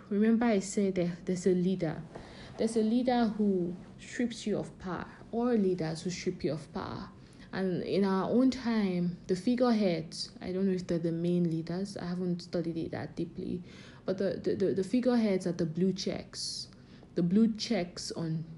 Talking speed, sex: 180 wpm, female